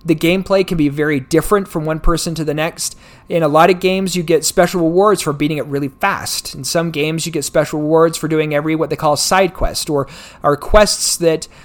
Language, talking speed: English, 230 wpm